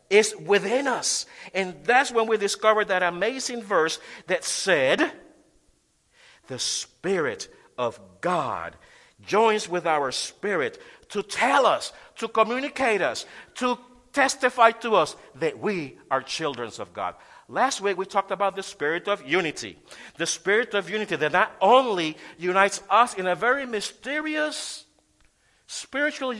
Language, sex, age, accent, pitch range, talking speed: English, male, 50-69, American, 185-250 Hz, 135 wpm